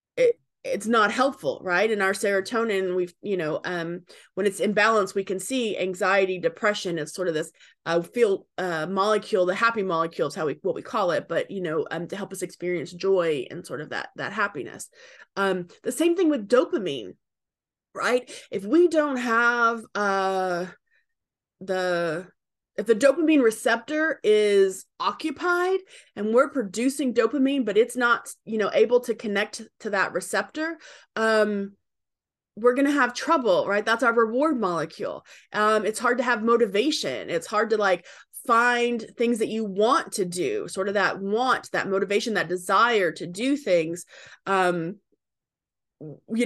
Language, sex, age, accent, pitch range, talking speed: English, female, 20-39, American, 190-250 Hz, 165 wpm